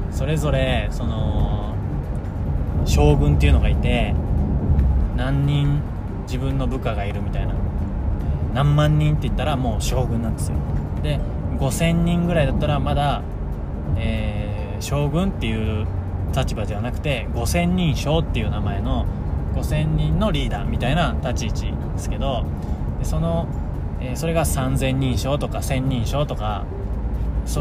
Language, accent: Japanese, native